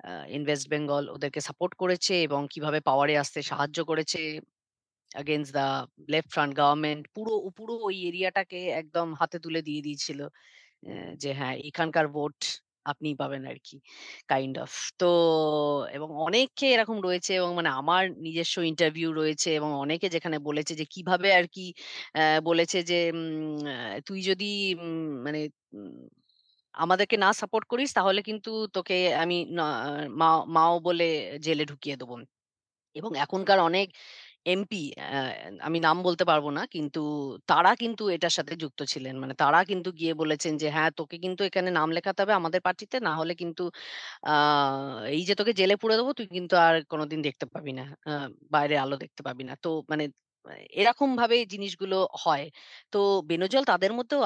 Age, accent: 30-49, native